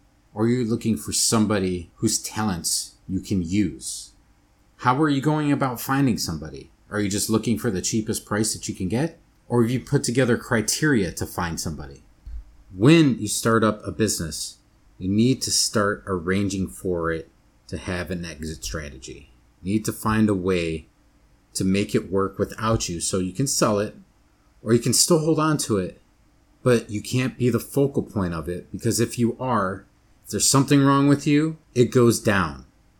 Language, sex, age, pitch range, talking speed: English, male, 30-49, 100-130 Hz, 185 wpm